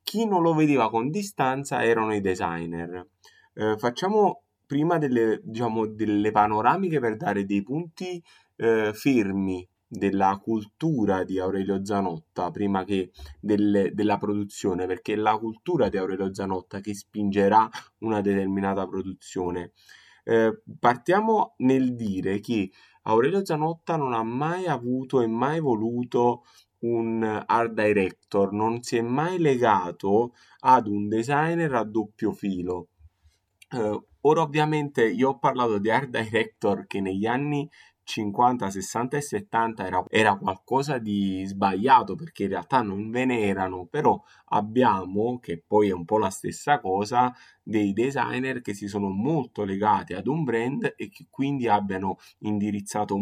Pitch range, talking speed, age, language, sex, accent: 100-130 Hz, 140 wpm, 20-39, Italian, male, native